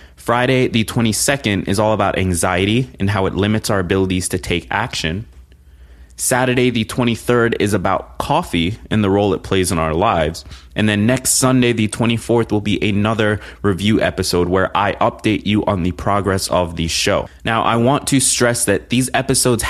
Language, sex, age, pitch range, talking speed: English, male, 20-39, 90-120 Hz, 180 wpm